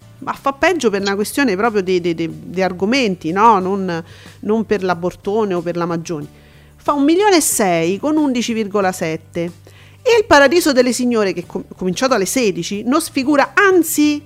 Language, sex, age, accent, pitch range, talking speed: Italian, female, 40-59, native, 190-270 Hz, 175 wpm